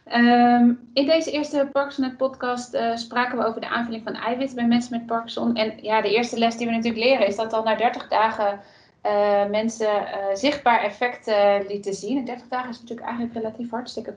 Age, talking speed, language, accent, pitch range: 30-49, 210 wpm, Dutch, Dutch, 200-230 Hz